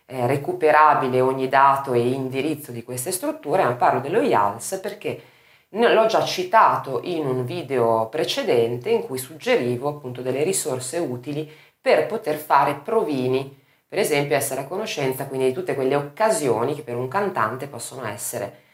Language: Italian